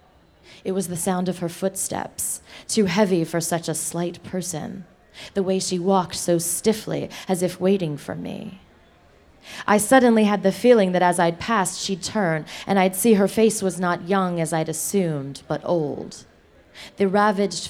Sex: female